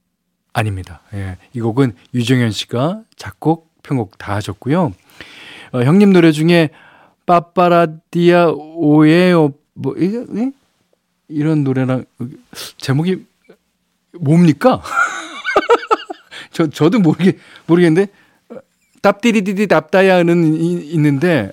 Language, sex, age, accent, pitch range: Korean, male, 40-59, native, 115-170 Hz